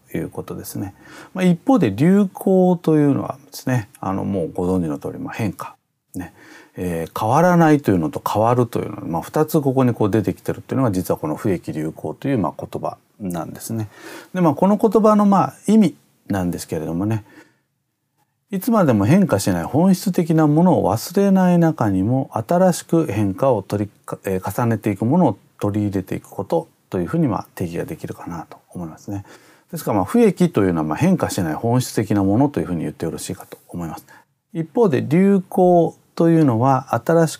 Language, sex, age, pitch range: Japanese, male, 40-59, 105-165 Hz